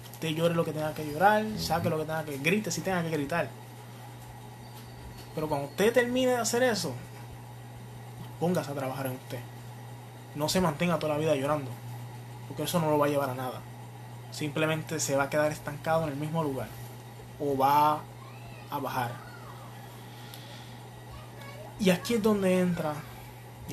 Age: 20-39